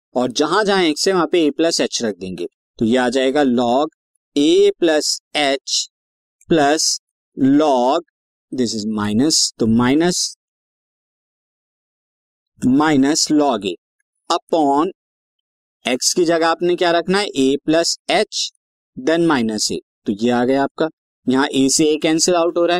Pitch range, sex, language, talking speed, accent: 130-185 Hz, male, Hindi, 150 wpm, native